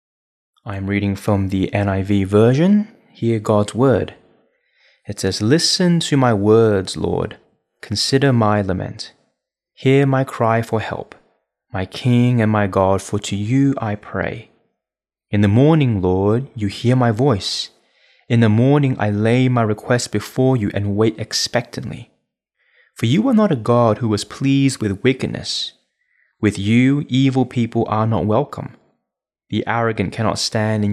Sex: male